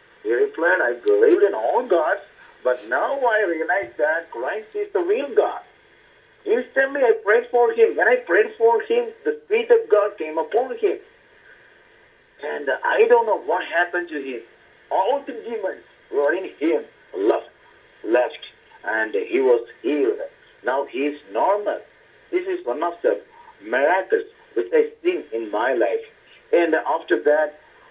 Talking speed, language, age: 160 wpm, English, 50-69